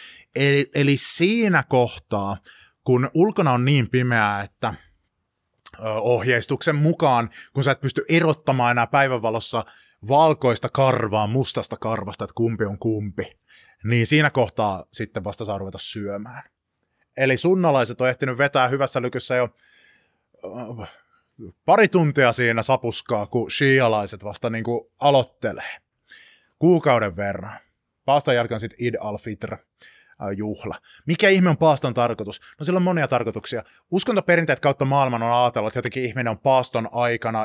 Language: Finnish